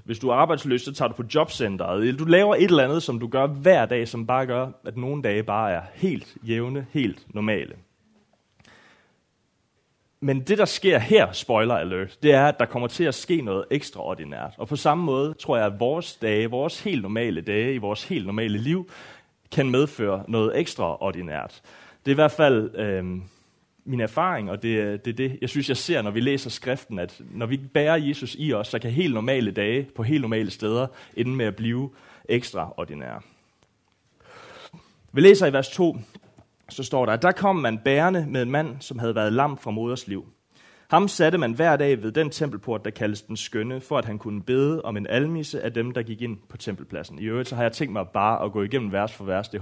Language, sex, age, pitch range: Danish, male, 30-49, 110-145 Hz